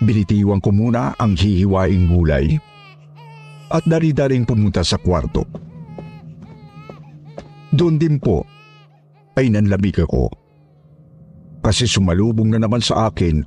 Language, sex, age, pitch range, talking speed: Filipino, male, 50-69, 80-130 Hz, 105 wpm